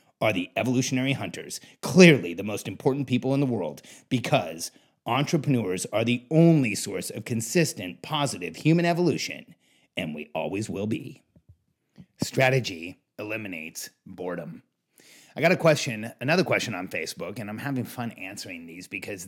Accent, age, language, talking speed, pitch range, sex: American, 30-49, English, 145 wpm, 110-140 Hz, male